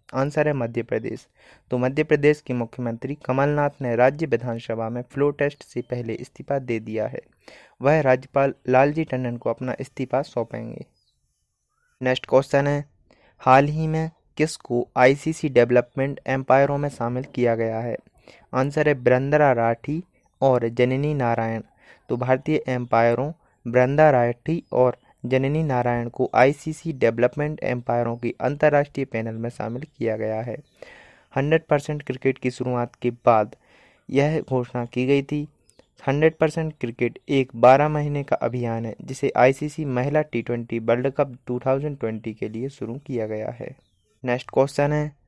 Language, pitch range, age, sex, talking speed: Hindi, 120-145 Hz, 30-49, male, 145 wpm